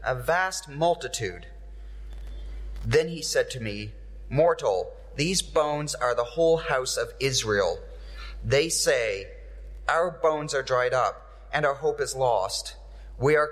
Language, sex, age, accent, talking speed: English, male, 30-49, American, 140 wpm